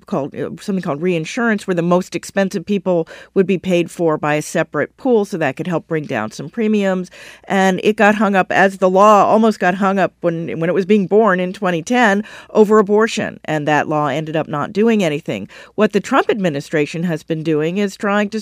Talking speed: 210 wpm